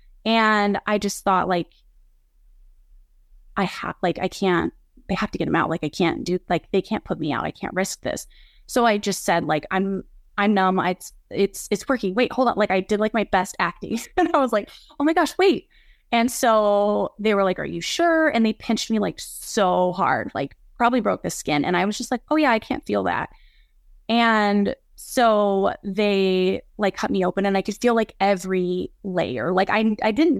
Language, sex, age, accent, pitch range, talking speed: English, female, 20-39, American, 185-230 Hz, 215 wpm